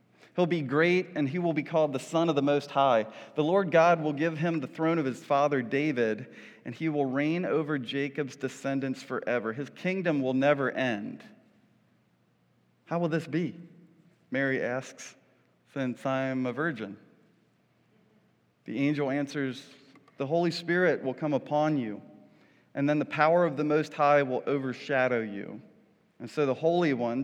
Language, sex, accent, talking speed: English, male, American, 165 wpm